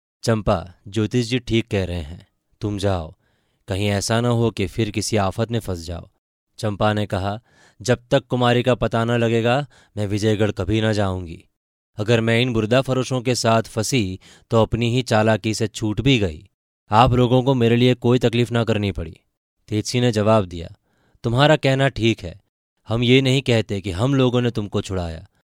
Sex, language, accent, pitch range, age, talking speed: male, Hindi, native, 100-120 Hz, 20-39, 185 wpm